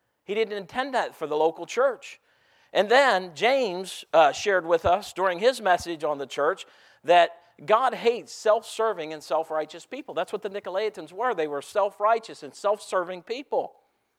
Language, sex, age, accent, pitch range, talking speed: English, male, 50-69, American, 165-230 Hz, 165 wpm